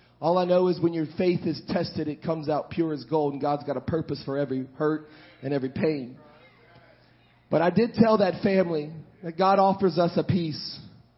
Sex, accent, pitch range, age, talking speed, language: male, American, 125-170 Hz, 30-49, 205 wpm, English